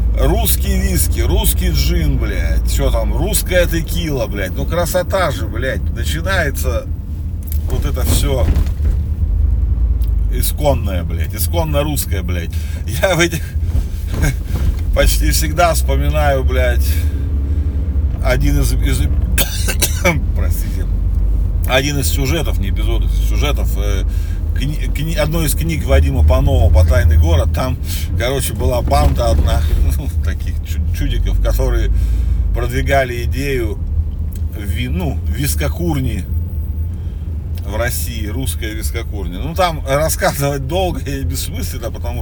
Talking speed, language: 100 wpm, Russian